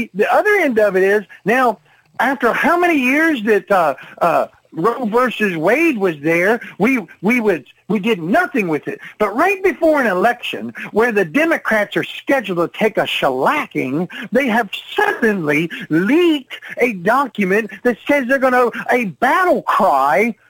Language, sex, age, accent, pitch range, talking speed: English, male, 50-69, American, 200-290 Hz, 160 wpm